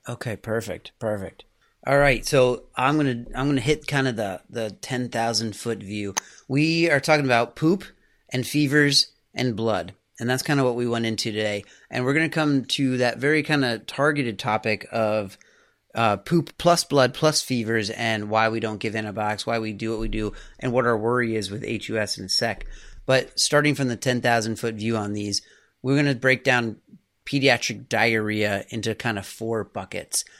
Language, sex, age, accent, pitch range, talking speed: English, male, 30-49, American, 110-130 Hz, 190 wpm